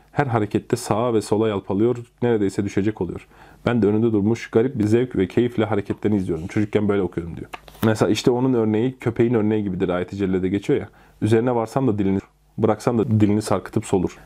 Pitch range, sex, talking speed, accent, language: 105-120 Hz, male, 185 wpm, native, Turkish